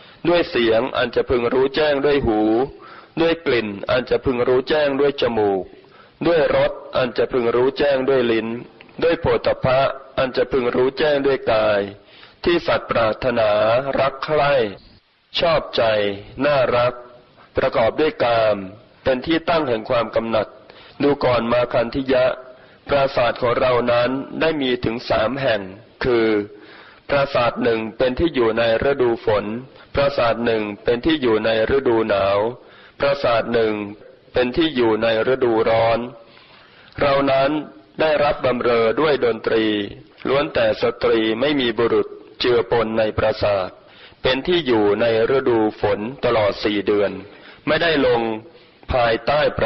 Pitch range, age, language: 110-140 Hz, 20-39, Thai